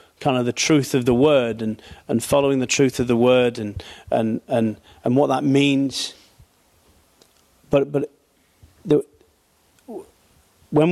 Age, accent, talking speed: 40-59, British, 145 wpm